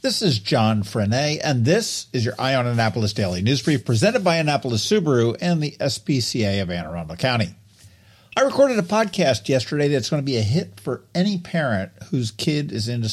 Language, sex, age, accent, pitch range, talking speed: English, male, 50-69, American, 110-165 Hz, 195 wpm